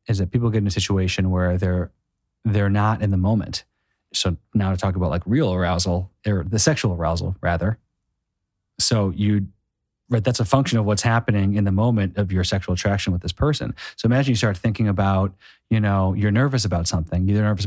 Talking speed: 205 wpm